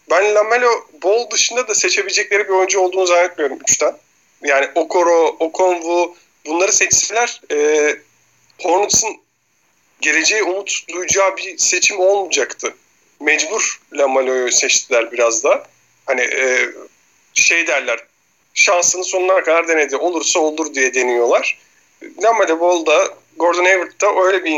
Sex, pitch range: male, 140-190 Hz